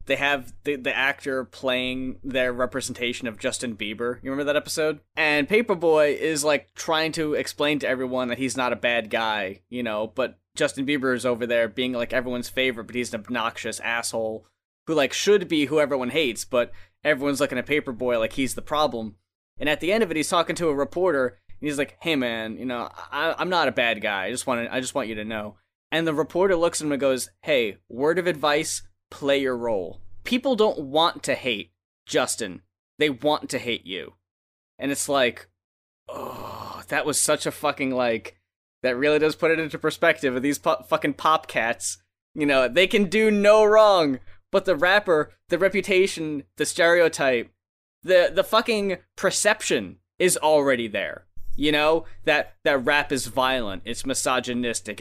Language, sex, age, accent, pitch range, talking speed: English, male, 10-29, American, 120-155 Hz, 190 wpm